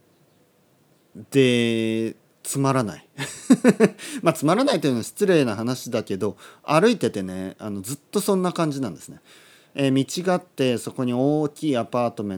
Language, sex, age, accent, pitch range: Japanese, male, 40-59, native, 100-140 Hz